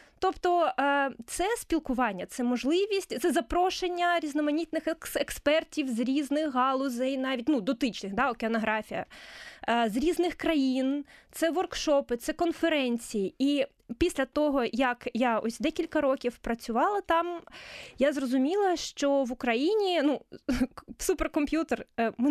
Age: 20-39